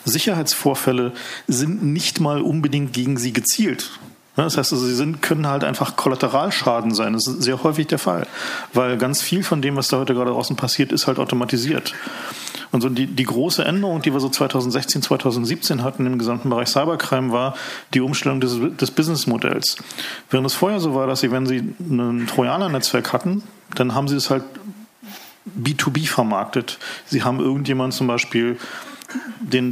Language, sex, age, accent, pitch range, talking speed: German, male, 40-59, German, 125-155 Hz, 170 wpm